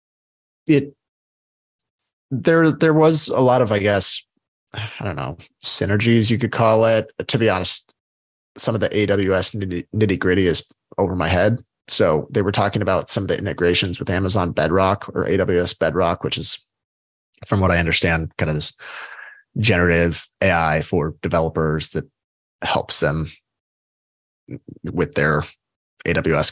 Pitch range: 90-110 Hz